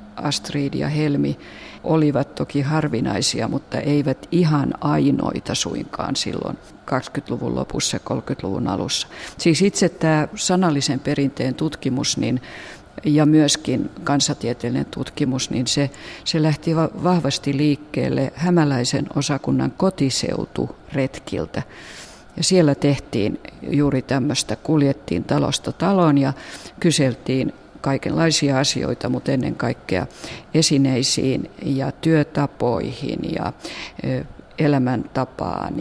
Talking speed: 95 wpm